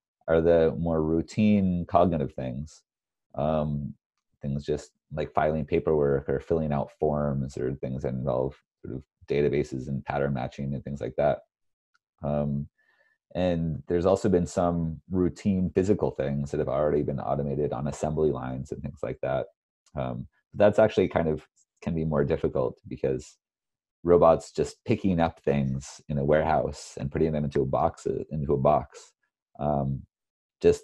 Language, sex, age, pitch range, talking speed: English, male, 30-49, 70-85 Hz, 150 wpm